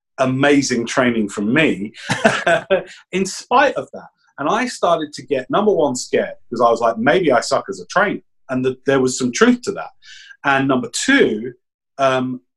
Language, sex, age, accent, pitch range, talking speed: English, male, 30-49, British, 120-170 Hz, 180 wpm